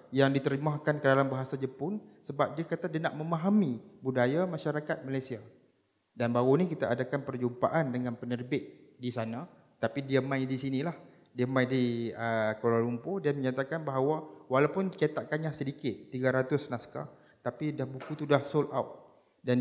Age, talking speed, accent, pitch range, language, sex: 30-49, 160 wpm, Indonesian, 130-160 Hz, English, male